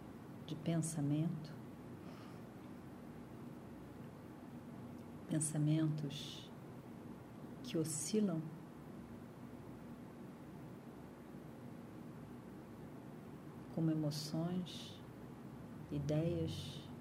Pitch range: 145-165 Hz